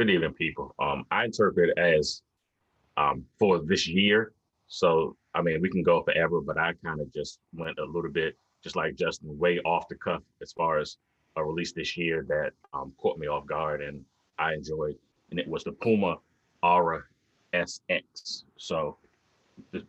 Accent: American